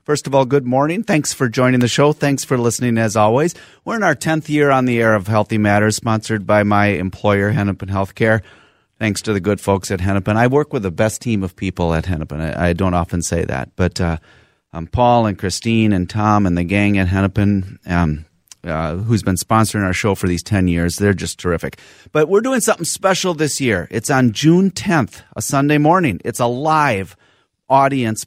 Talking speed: 210 wpm